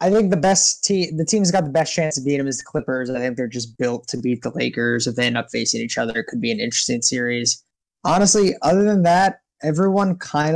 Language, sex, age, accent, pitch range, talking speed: English, male, 20-39, American, 130-170 Hz, 255 wpm